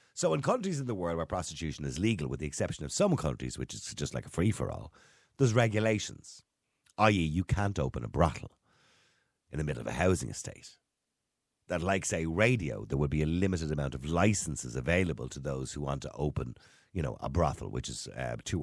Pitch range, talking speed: 75-105 Hz, 205 wpm